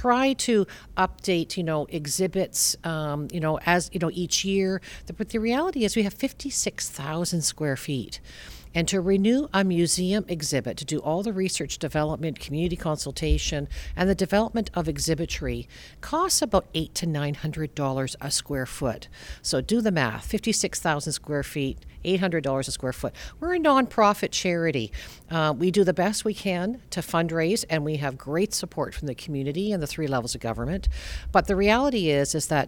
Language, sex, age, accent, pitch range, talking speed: English, female, 50-69, American, 140-190 Hz, 180 wpm